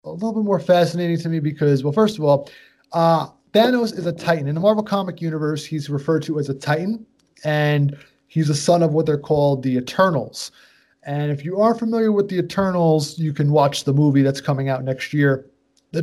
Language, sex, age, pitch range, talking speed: English, male, 30-49, 140-175 Hz, 215 wpm